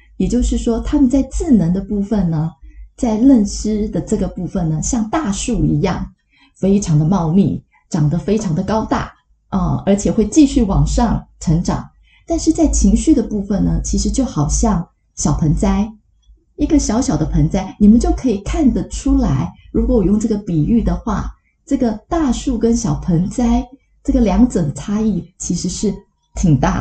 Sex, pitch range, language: female, 170-230 Hz, Chinese